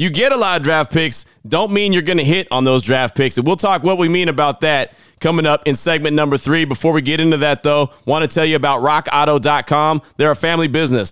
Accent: American